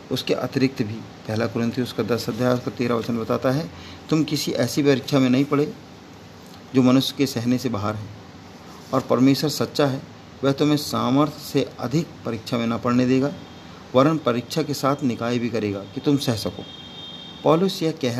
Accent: native